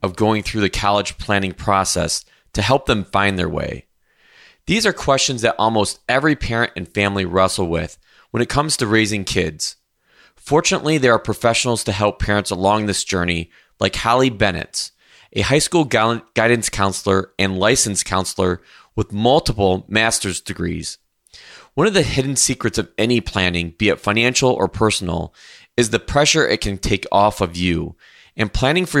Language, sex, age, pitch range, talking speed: English, male, 20-39, 95-120 Hz, 165 wpm